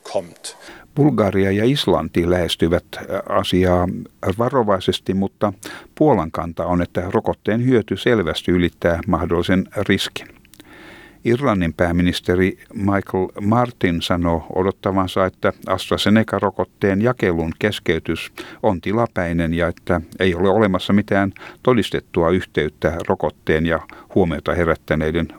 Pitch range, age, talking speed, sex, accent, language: 90-130 Hz, 60-79, 95 wpm, male, native, Finnish